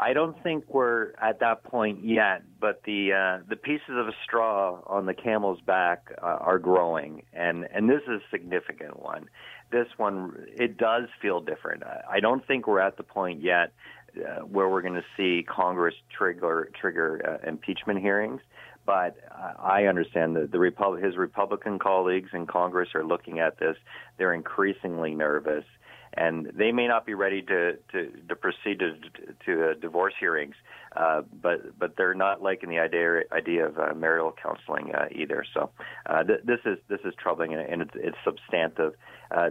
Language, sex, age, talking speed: English, male, 40-59, 180 wpm